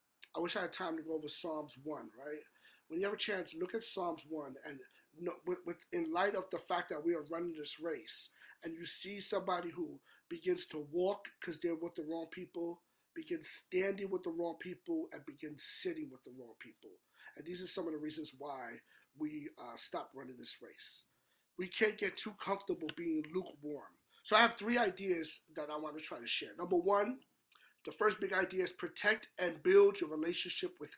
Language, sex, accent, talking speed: English, male, American, 210 wpm